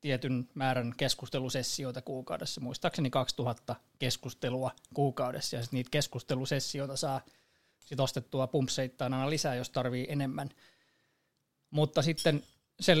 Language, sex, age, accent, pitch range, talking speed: Finnish, male, 20-39, native, 130-145 Hz, 110 wpm